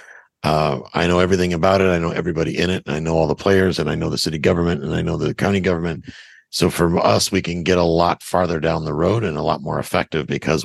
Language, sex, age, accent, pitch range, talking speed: English, male, 50-69, American, 80-95 Hz, 265 wpm